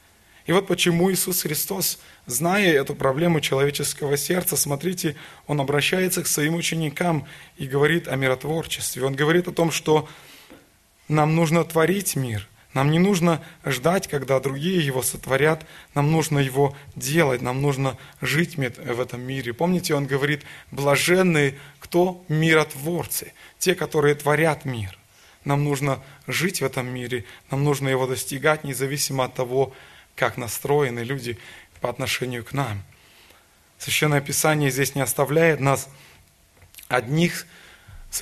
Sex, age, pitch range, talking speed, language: male, 20-39, 130-160 Hz, 135 wpm, Russian